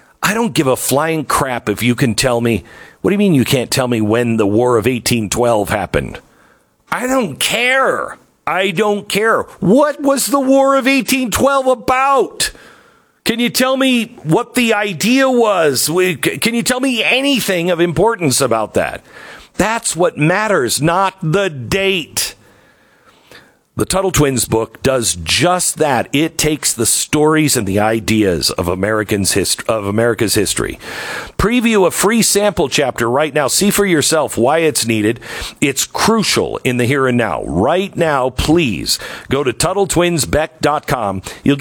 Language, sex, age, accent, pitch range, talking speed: English, male, 50-69, American, 120-200 Hz, 155 wpm